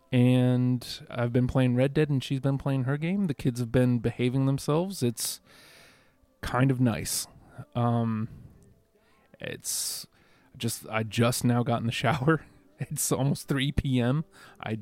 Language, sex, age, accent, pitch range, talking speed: English, male, 30-49, American, 115-140 Hz, 150 wpm